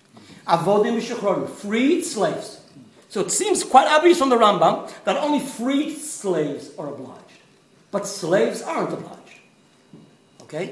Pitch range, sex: 200-320 Hz, male